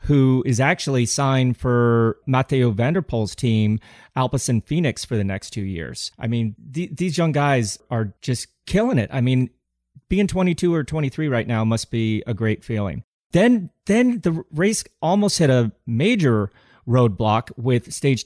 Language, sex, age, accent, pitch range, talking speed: English, male, 30-49, American, 115-145 Hz, 165 wpm